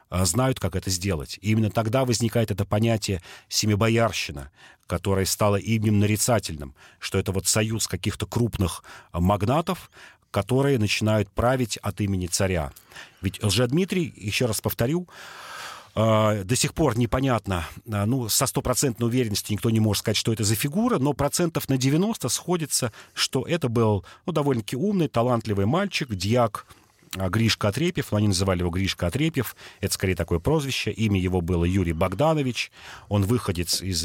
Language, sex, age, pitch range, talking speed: Russian, male, 40-59, 95-125 Hz, 145 wpm